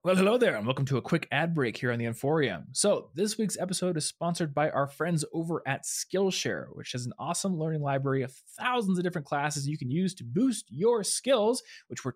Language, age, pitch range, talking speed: English, 20-39, 130-170 Hz, 225 wpm